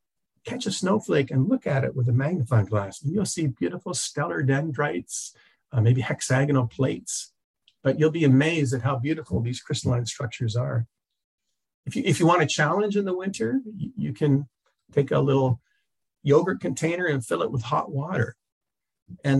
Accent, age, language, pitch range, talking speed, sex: American, 50-69, English, 120-165 Hz, 170 wpm, male